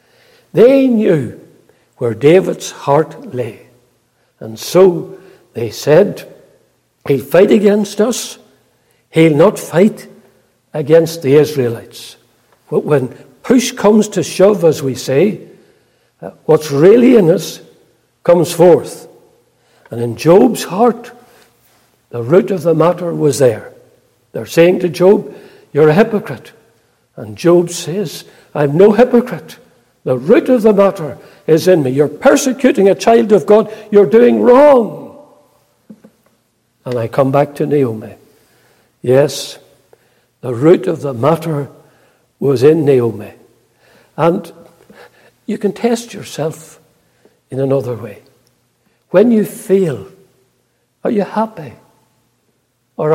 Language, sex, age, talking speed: English, male, 60-79, 120 wpm